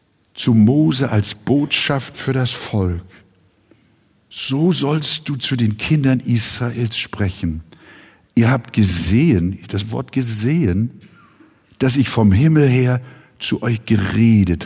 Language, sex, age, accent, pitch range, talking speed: German, male, 60-79, German, 105-135 Hz, 120 wpm